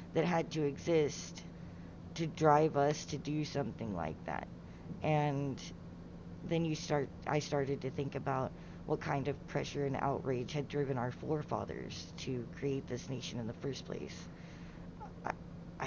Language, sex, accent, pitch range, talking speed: English, female, American, 140-165 Hz, 150 wpm